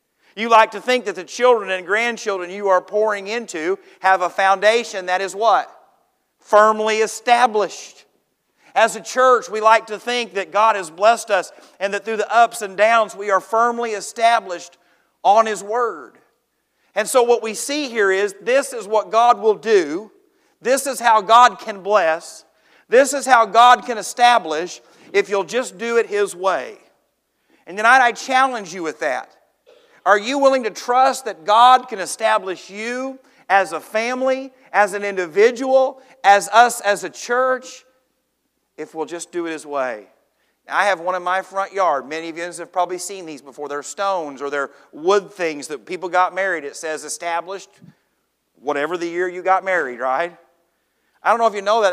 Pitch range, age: 185-240 Hz, 40-59